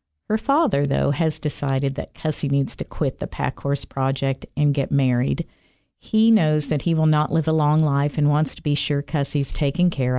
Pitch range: 130-150 Hz